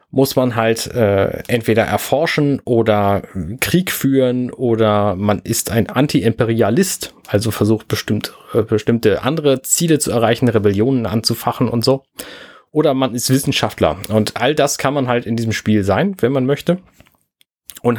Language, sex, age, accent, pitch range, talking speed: German, male, 30-49, German, 110-135 Hz, 150 wpm